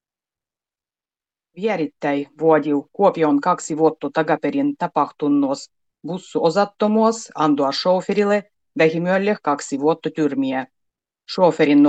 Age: 30-49